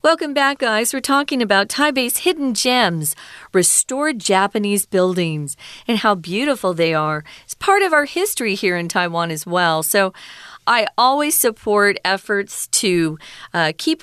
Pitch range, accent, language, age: 180-255 Hz, American, Chinese, 40-59